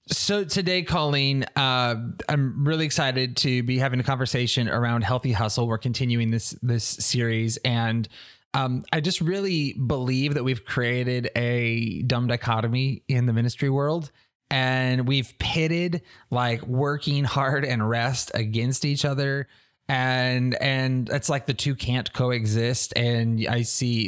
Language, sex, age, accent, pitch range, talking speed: English, male, 20-39, American, 115-135 Hz, 145 wpm